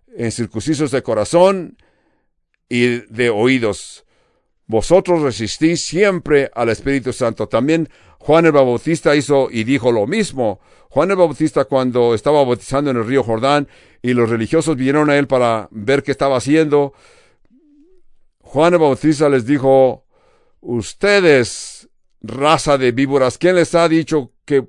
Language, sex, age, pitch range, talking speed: English, male, 60-79, 120-160 Hz, 140 wpm